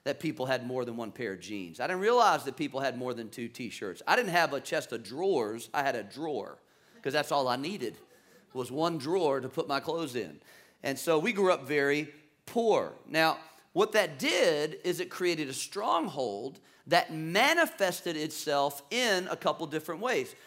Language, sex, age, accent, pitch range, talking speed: English, male, 40-59, American, 155-215 Hz, 195 wpm